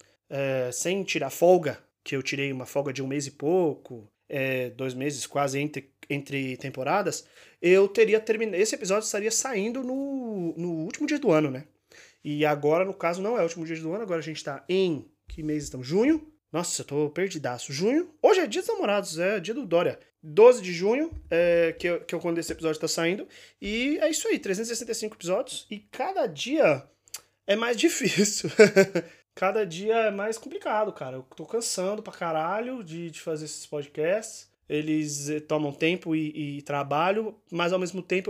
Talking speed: 185 wpm